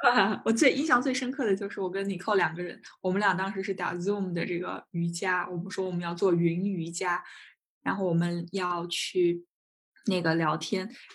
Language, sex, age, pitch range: Chinese, female, 10-29, 170-195 Hz